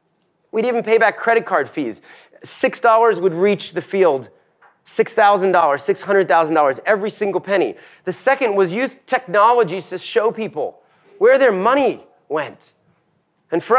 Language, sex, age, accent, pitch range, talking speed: English, male, 30-49, American, 185-230 Hz, 135 wpm